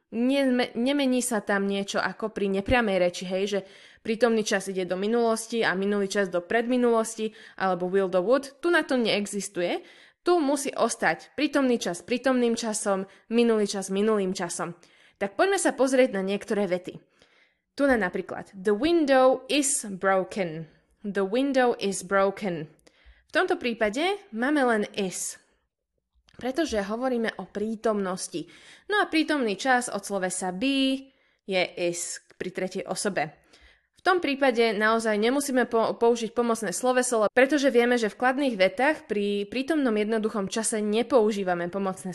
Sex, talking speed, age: female, 140 wpm, 20-39